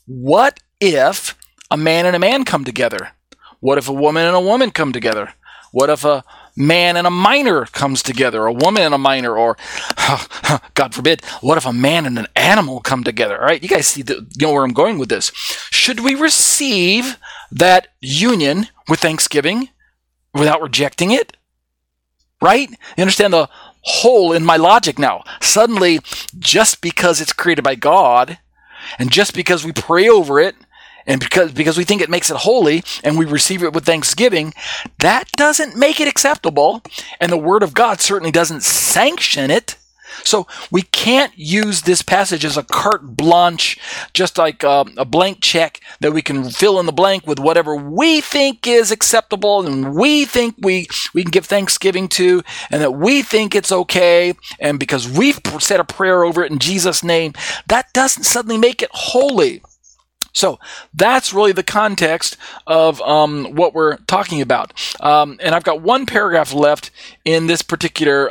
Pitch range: 150-215 Hz